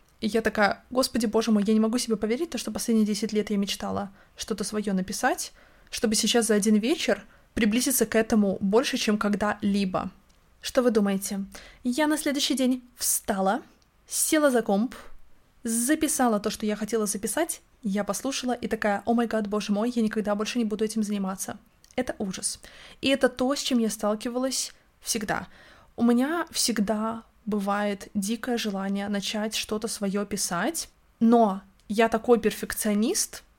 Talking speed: 160 wpm